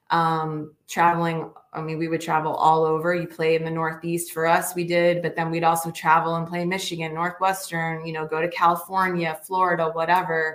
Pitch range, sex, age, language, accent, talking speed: 160-185 Hz, female, 20-39, English, American, 195 wpm